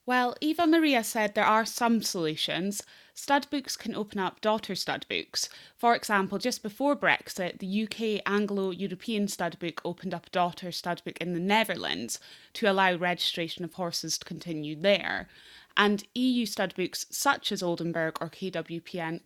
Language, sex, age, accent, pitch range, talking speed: English, female, 20-39, British, 175-225 Hz, 150 wpm